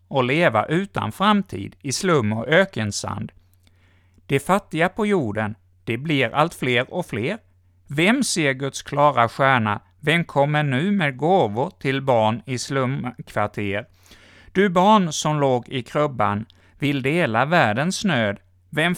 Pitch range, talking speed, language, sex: 105-155 Hz, 135 wpm, Swedish, male